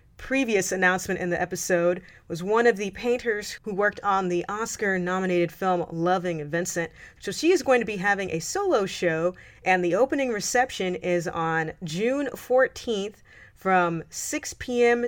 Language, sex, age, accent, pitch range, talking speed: English, female, 30-49, American, 175-220 Hz, 160 wpm